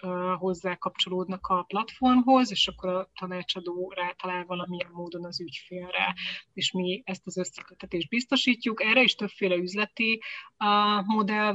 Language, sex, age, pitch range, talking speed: Hungarian, female, 30-49, 185-210 Hz, 135 wpm